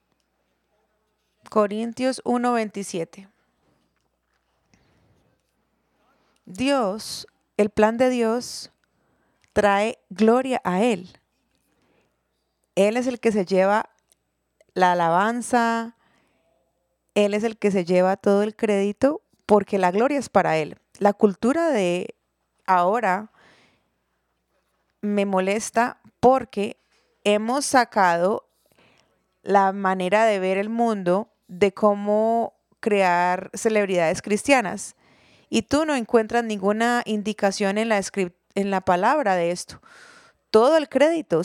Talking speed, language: 105 wpm, English